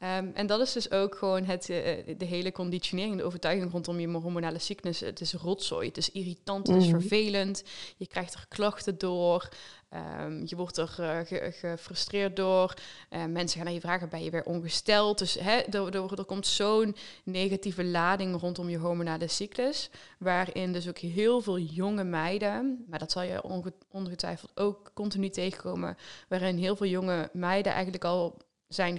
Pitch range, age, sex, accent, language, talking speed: 175-200 Hz, 20-39, female, Dutch, Dutch, 170 wpm